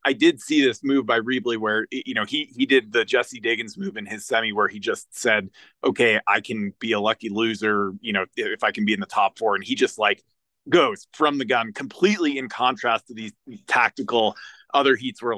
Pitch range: 110-160 Hz